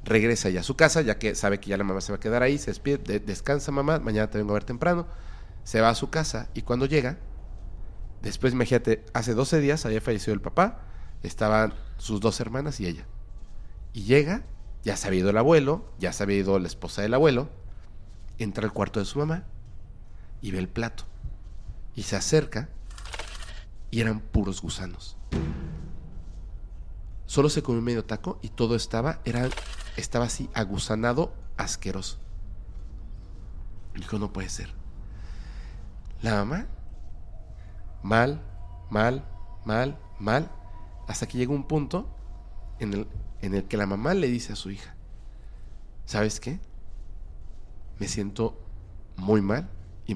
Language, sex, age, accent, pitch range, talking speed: Spanish, male, 40-59, Mexican, 90-115 Hz, 155 wpm